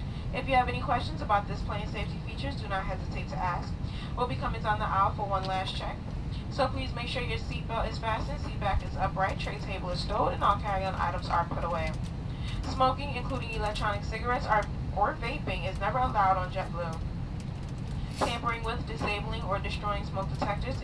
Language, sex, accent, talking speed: English, female, American, 190 wpm